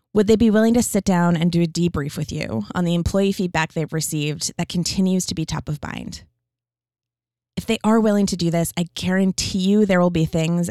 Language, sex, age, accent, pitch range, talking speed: English, female, 20-39, American, 155-200 Hz, 225 wpm